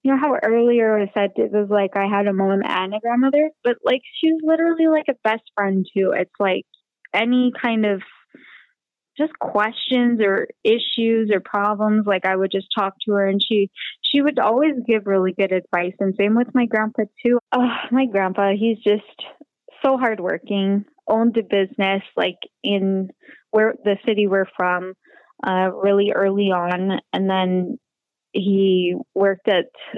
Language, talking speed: English, 170 wpm